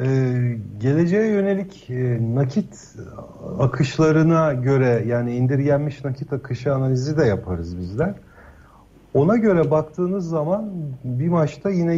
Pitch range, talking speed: 115-160 Hz, 110 wpm